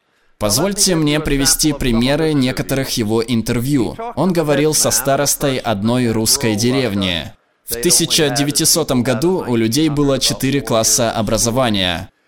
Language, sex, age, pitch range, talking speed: Russian, male, 20-39, 110-155 Hz, 110 wpm